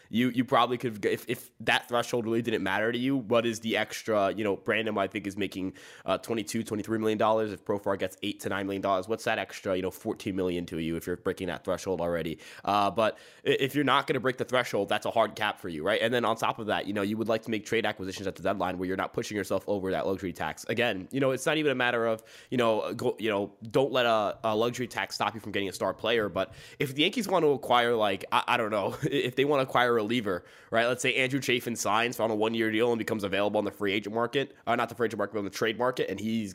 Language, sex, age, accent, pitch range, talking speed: English, male, 20-39, American, 100-125 Hz, 275 wpm